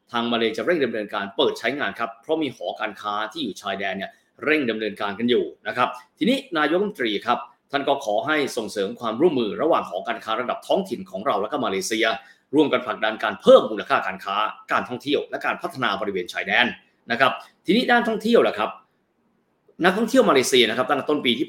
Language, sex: Thai, male